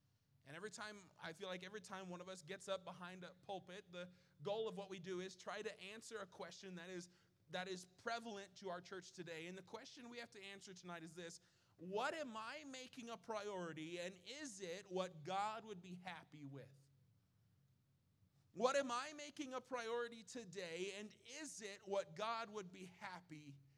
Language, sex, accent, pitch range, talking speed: English, male, American, 155-210 Hz, 195 wpm